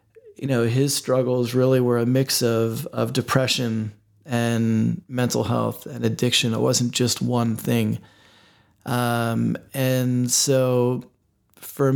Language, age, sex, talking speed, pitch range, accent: English, 30-49, male, 125 wpm, 115-130 Hz, American